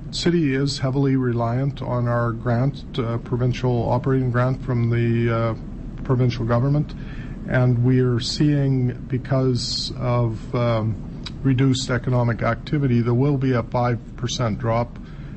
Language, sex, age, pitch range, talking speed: English, male, 50-69, 115-135 Hz, 125 wpm